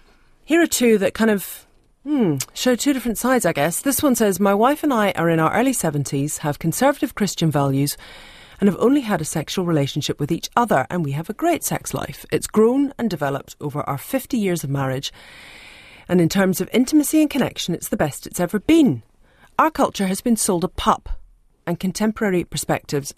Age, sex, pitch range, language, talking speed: 40-59, female, 145-215 Hz, English, 205 wpm